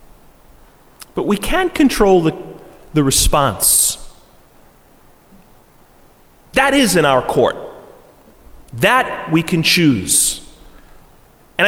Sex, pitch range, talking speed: male, 120-195 Hz, 85 wpm